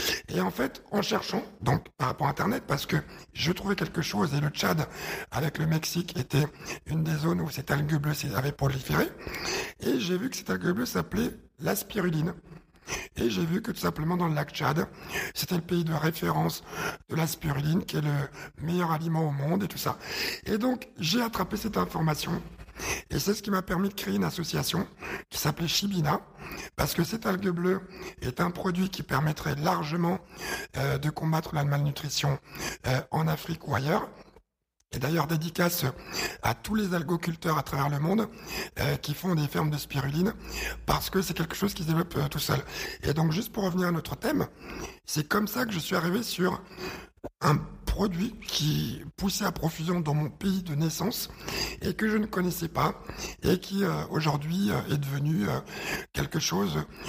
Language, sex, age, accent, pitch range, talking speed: French, male, 60-79, French, 150-185 Hz, 190 wpm